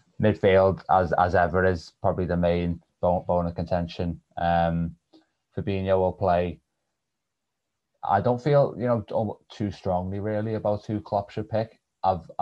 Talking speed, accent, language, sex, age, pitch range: 145 wpm, British, English, male, 20-39, 80-90 Hz